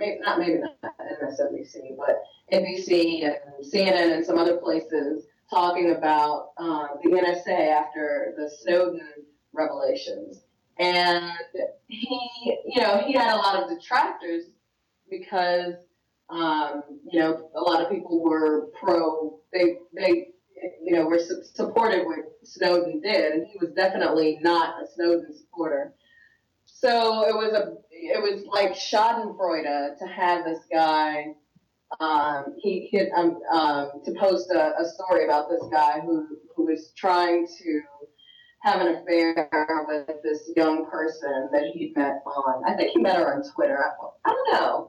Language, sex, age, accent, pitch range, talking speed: English, female, 30-49, American, 160-200 Hz, 150 wpm